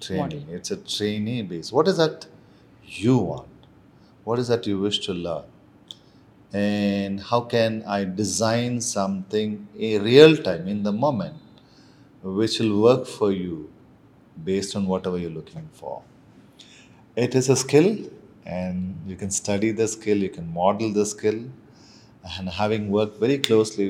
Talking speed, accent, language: 150 wpm, native, Telugu